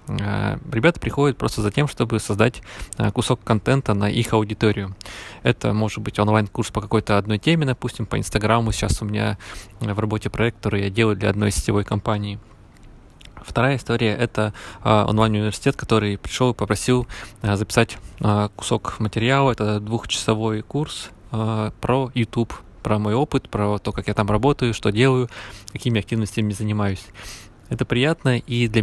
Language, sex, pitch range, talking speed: Russian, male, 105-120 Hz, 145 wpm